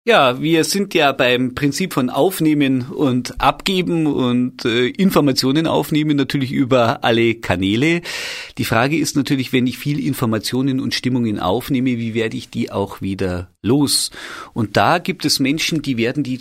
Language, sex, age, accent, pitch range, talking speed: German, male, 40-59, German, 105-145 Hz, 160 wpm